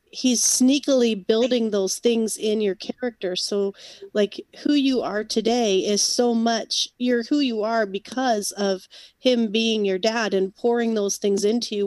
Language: English